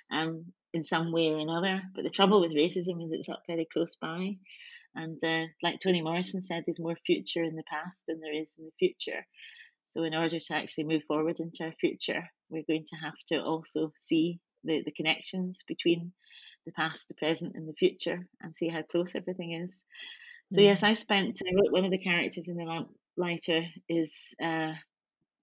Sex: female